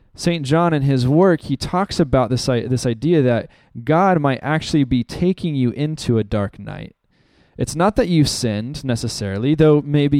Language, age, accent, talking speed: English, 20-39, American, 175 wpm